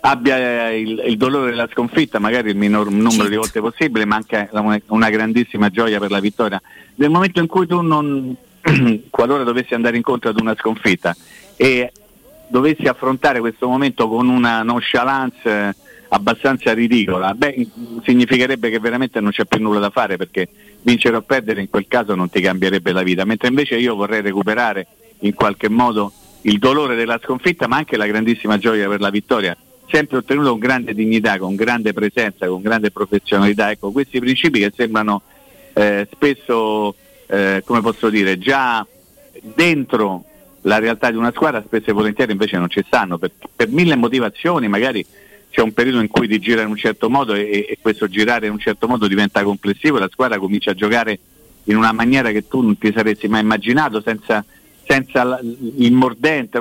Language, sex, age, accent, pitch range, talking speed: Italian, male, 50-69, native, 105-125 Hz, 175 wpm